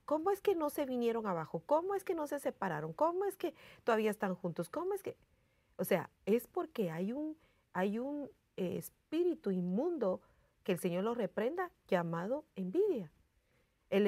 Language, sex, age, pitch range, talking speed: English, female, 40-59, 190-285 Hz, 160 wpm